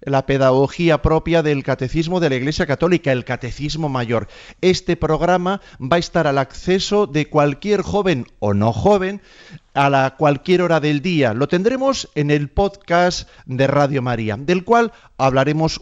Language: Spanish